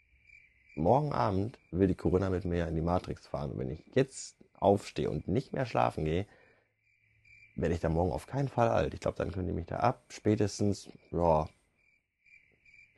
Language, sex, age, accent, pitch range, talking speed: German, male, 30-49, German, 80-110 Hz, 185 wpm